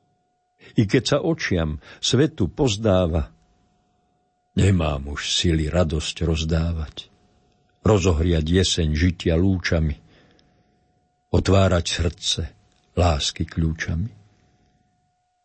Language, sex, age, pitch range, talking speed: Slovak, male, 60-79, 85-115 Hz, 75 wpm